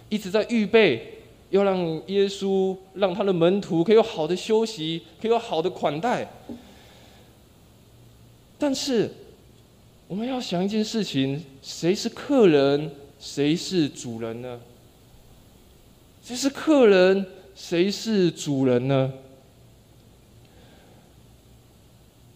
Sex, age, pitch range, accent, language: male, 20-39, 145-235 Hz, native, Chinese